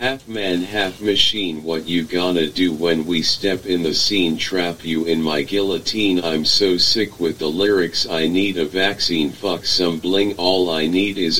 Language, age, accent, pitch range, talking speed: English, 40-59, American, 85-100 Hz, 190 wpm